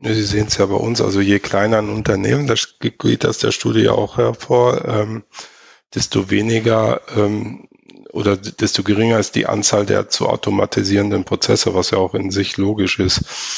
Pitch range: 100-115 Hz